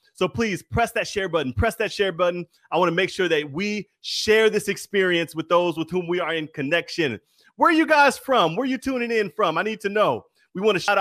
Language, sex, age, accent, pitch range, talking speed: English, male, 30-49, American, 195-235 Hz, 255 wpm